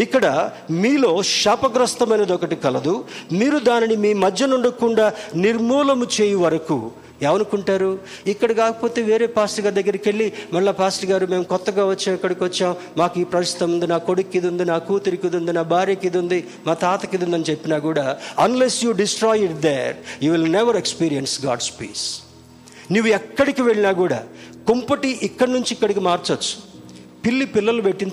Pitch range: 165-220 Hz